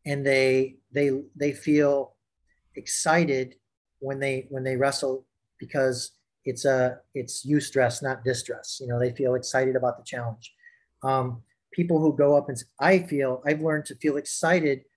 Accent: American